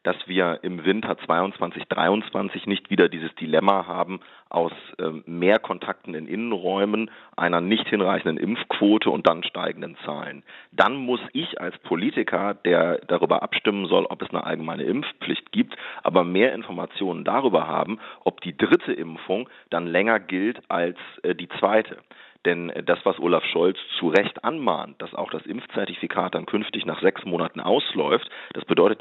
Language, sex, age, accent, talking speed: German, male, 40-59, German, 155 wpm